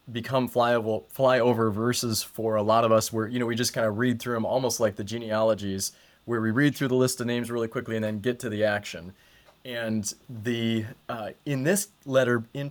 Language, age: English, 20-39